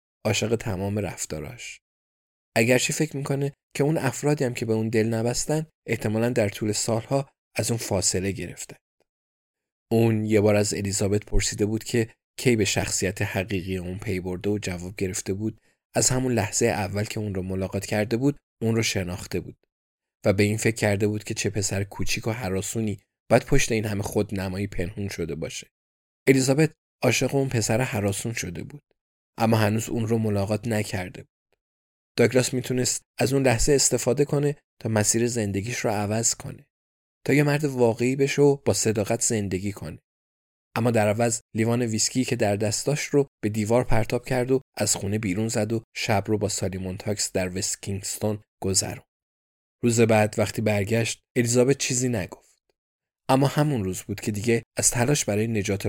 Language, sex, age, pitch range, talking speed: Persian, male, 20-39, 100-120 Hz, 165 wpm